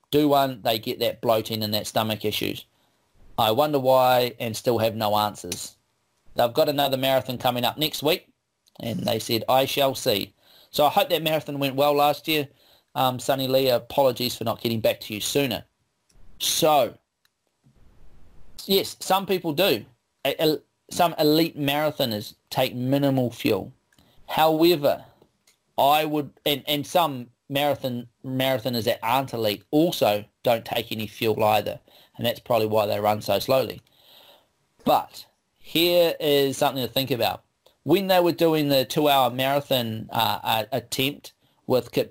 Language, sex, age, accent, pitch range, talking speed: English, male, 30-49, Australian, 115-145 Hz, 150 wpm